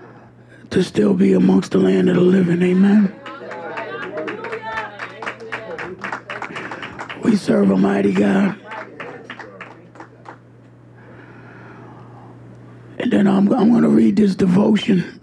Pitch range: 165-200 Hz